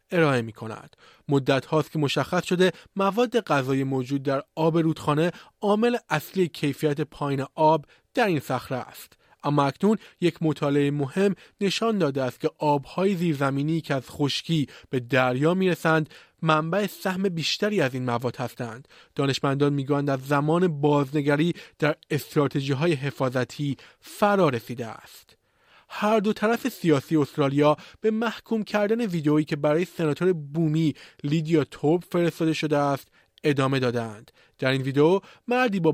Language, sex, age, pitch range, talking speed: Persian, male, 30-49, 140-175 Hz, 140 wpm